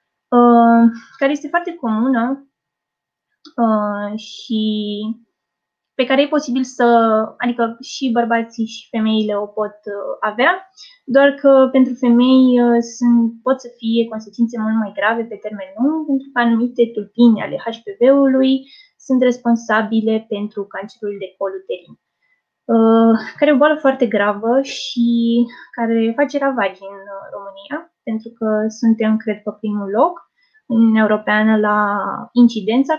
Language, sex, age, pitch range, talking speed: Romanian, female, 20-39, 215-270 Hz, 135 wpm